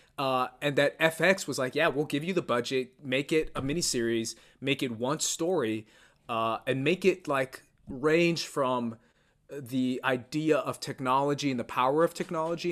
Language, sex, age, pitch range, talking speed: English, male, 20-39, 120-150 Hz, 170 wpm